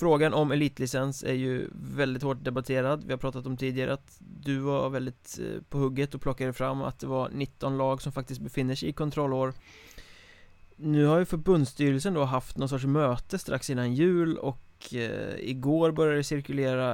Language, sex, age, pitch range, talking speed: Swedish, male, 20-39, 125-145 Hz, 180 wpm